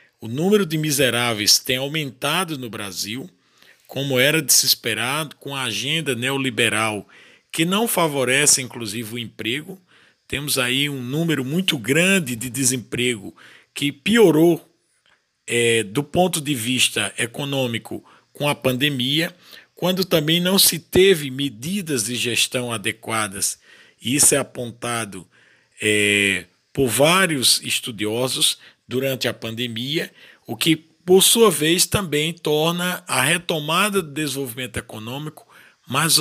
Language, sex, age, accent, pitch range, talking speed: Portuguese, male, 50-69, Brazilian, 120-165 Hz, 120 wpm